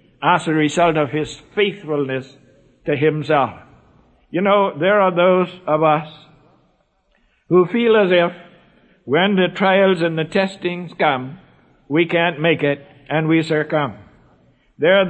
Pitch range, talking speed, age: 155-195 Hz, 140 wpm, 60-79